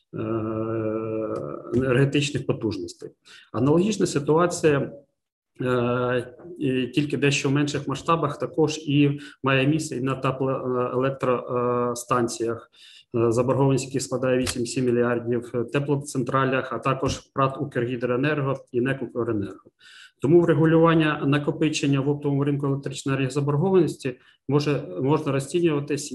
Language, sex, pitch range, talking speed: Ukrainian, male, 120-140 Hz, 95 wpm